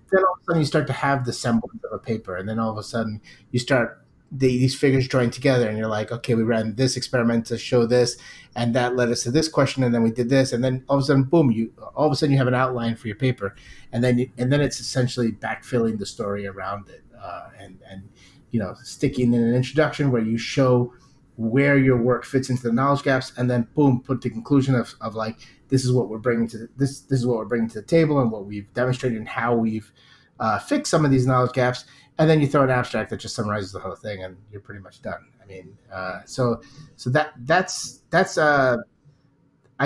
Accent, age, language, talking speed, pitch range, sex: American, 30-49, English, 250 wpm, 115-140 Hz, male